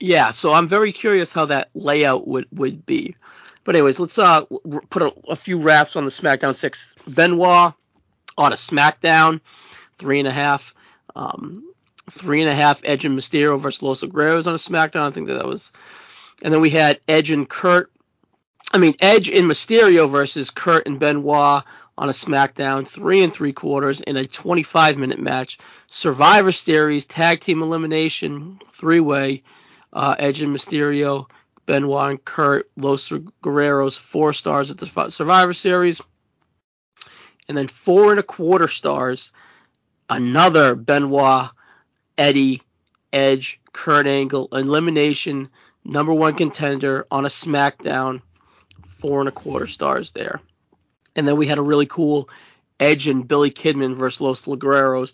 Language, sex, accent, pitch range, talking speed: English, male, American, 140-160 Hz, 150 wpm